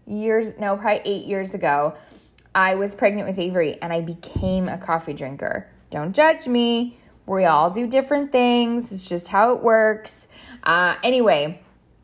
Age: 10-29